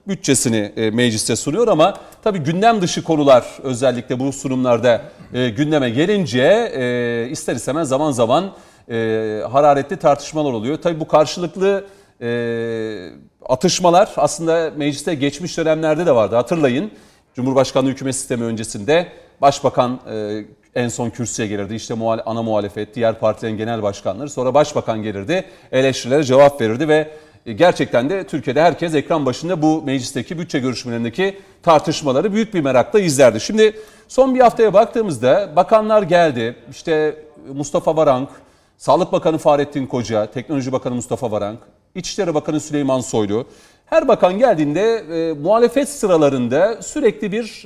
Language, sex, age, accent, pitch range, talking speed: Turkish, male, 40-59, native, 120-175 Hz, 125 wpm